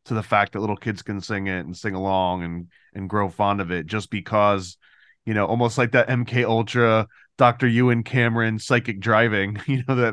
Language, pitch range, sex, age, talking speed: English, 105-120 Hz, male, 20-39, 205 wpm